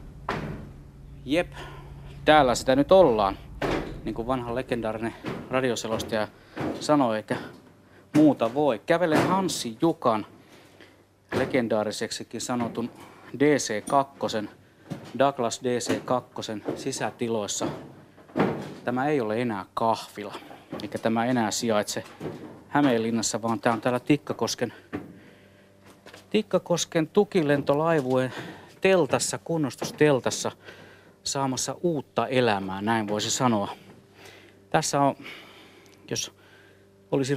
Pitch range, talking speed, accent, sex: 105-135 Hz, 85 wpm, native, male